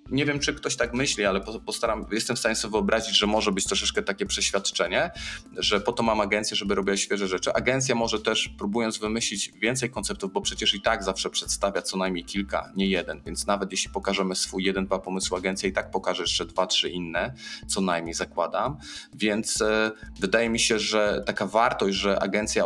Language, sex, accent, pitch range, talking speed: Polish, male, native, 95-115 Hz, 195 wpm